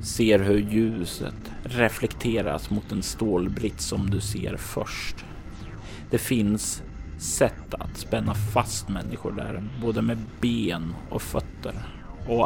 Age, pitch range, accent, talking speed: 30-49, 85-115 Hz, native, 120 wpm